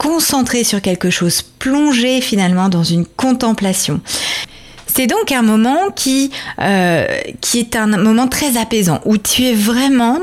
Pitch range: 190-245 Hz